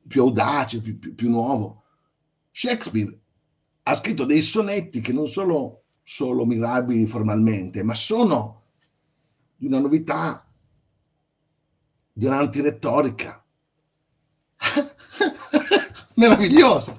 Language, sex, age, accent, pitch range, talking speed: Italian, male, 50-69, native, 115-180 Hz, 90 wpm